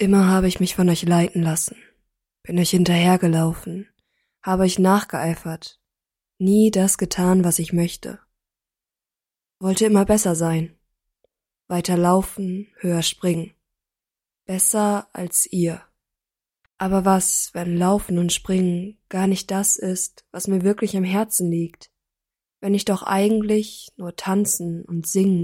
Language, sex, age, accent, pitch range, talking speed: German, female, 20-39, German, 175-195 Hz, 130 wpm